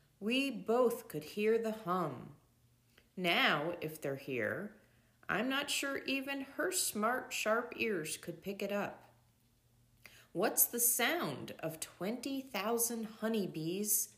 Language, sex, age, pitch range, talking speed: English, female, 40-59, 155-245 Hz, 120 wpm